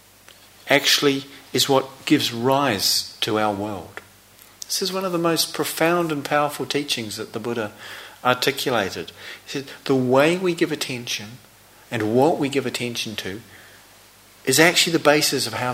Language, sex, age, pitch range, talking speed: English, male, 40-59, 110-155 Hz, 155 wpm